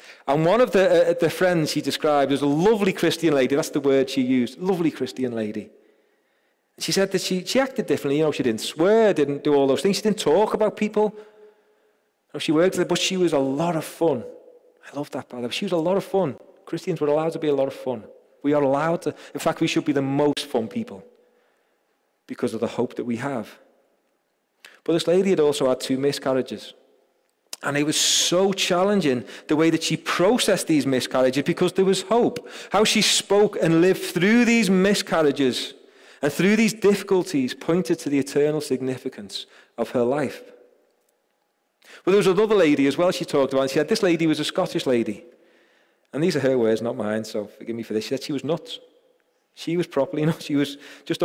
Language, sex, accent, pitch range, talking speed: English, male, British, 140-195 Hz, 210 wpm